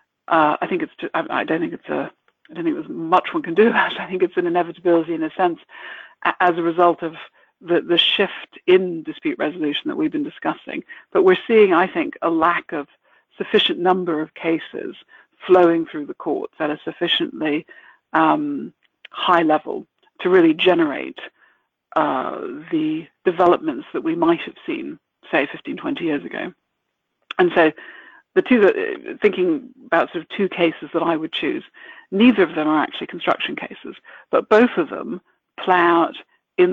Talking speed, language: 175 wpm, English